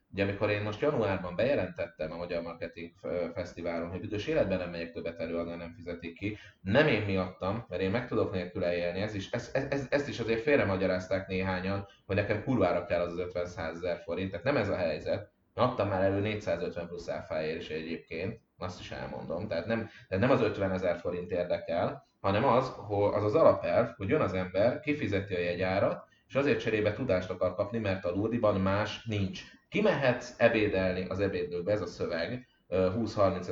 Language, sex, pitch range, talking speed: Hungarian, male, 90-115 Hz, 190 wpm